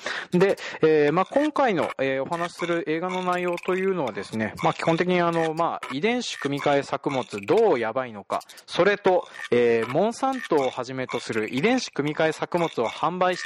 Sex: male